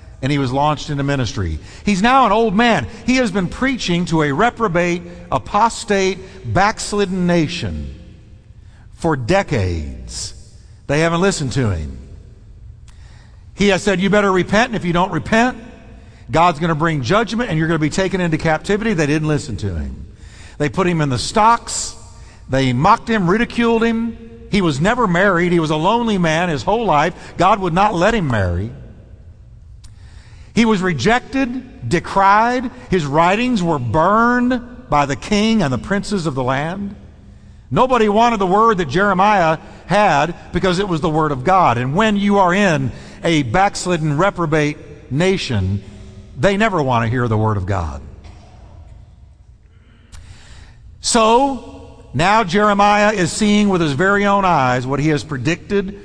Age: 50-69